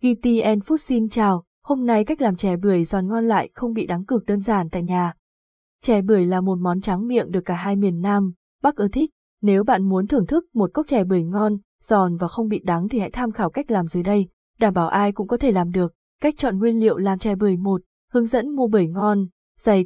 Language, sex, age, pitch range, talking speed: Vietnamese, female, 20-39, 185-225 Hz, 250 wpm